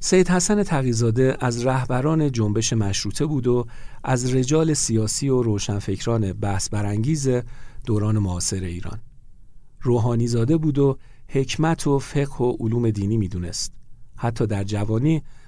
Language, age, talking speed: Persian, 50-69, 130 wpm